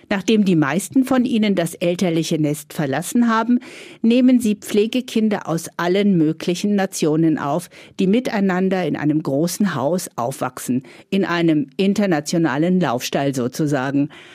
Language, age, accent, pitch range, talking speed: German, 50-69, German, 165-210 Hz, 125 wpm